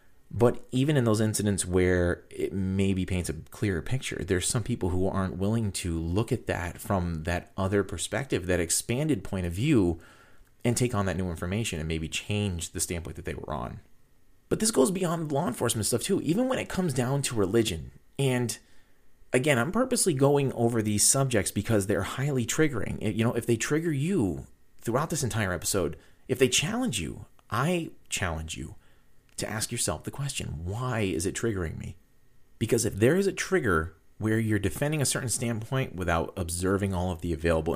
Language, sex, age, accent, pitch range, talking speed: English, male, 30-49, American, 90-125 Hz, 190 wpm